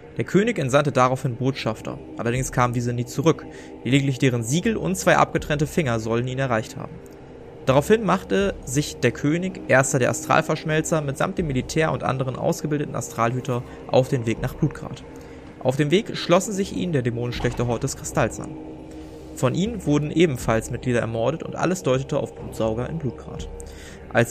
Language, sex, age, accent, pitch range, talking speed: German, male, 20-39, German, 115-155 Hz, 165 wpm